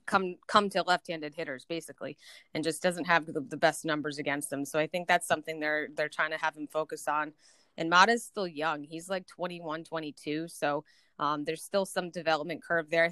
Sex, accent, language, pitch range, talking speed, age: female, American, English, 160-195 Hz, 210 wpm, 20-39